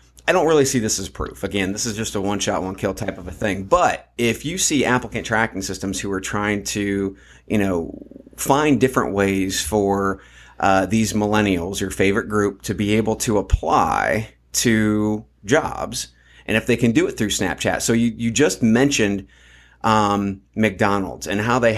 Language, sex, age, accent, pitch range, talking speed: English, male, 30-49, American, 95-120 Hz, 180 wpm